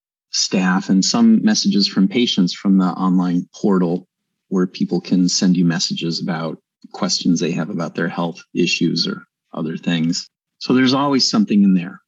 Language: English